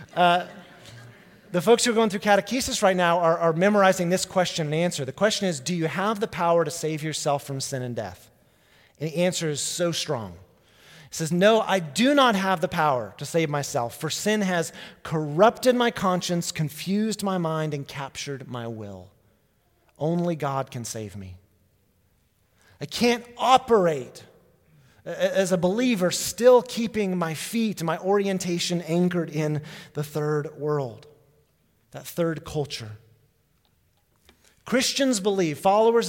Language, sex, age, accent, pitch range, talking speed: English, male, 30-49, American, 135-190 Hz, 150 wpm